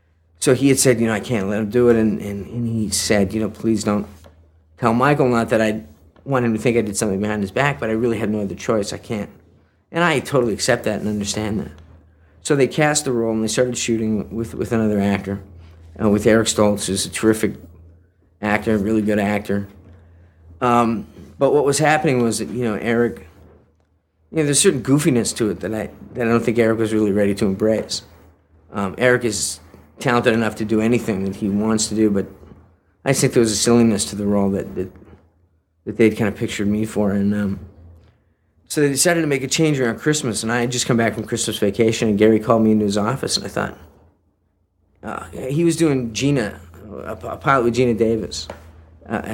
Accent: American